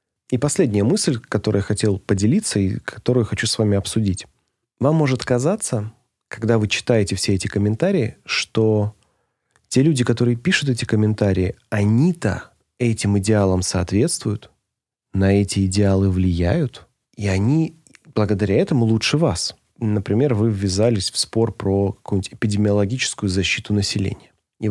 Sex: male